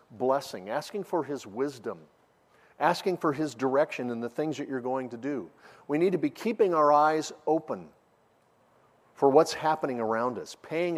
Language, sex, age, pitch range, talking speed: English, male, 50-69, 125-160 Hz, 170 wpm